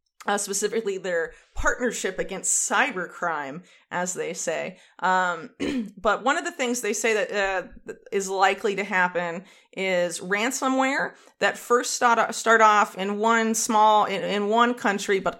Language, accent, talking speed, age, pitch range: English, American, 150 wpm, 30-49, 180-225 Hz